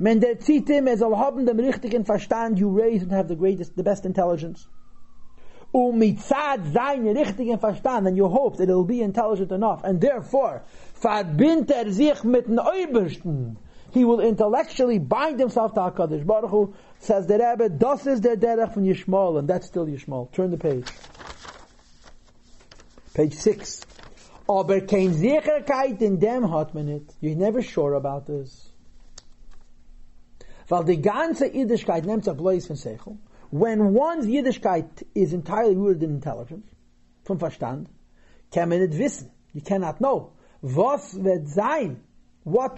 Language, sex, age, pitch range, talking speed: English, male, 50-69, 155-225 Hz, 95 wpm